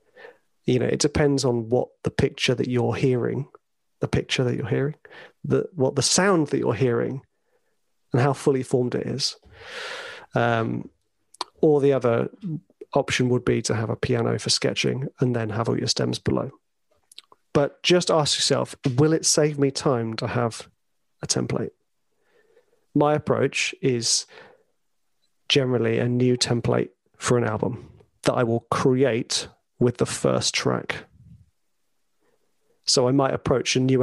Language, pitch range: English, 120-155 Hz